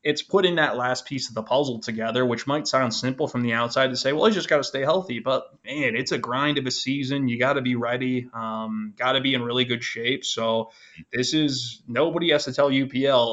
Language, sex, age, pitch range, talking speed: English, male, 20-39, 115-135 Hz, 240 wpm